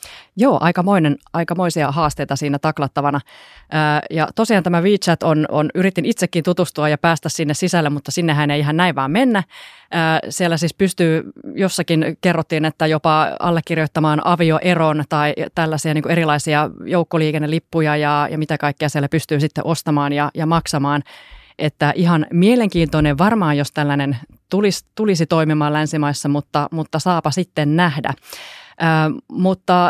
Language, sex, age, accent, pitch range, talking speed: Finnish, female, 20-39, native, 150-180 Hz, 135 wpm